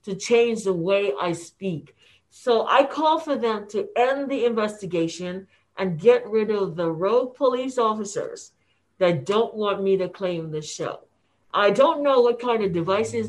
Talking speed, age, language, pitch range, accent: 170 wpm, 50-69, English, 180-240 Hz, American